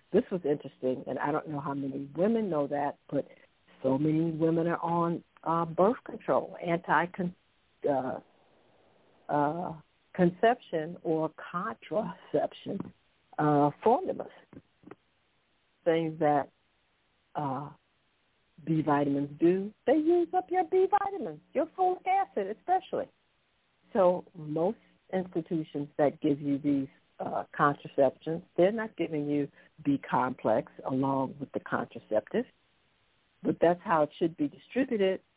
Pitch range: 145-190 Hz